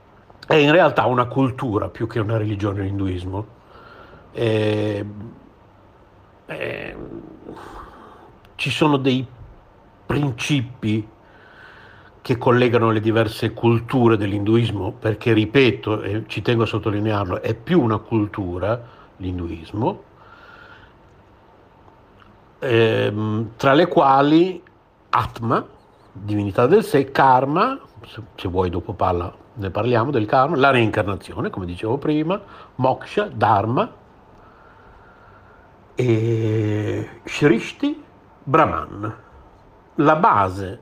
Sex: male